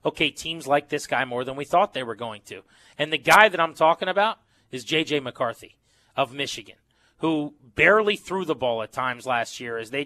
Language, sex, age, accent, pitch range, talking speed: English, male, 30-49, American, 125-165 Hz, 215 wpm